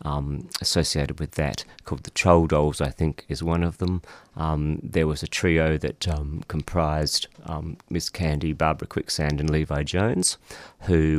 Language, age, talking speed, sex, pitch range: English, 30-49, 165 wpm, male, 75-90 Hz